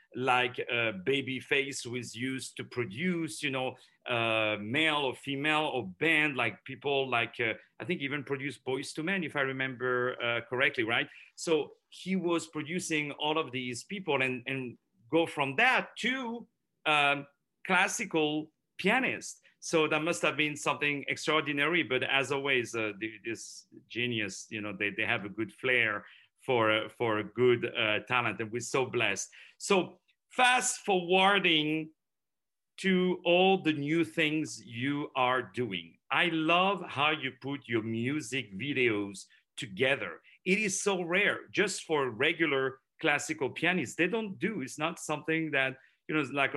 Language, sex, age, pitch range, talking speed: English, male, 40-59, 125-165 Hz, 155 wpm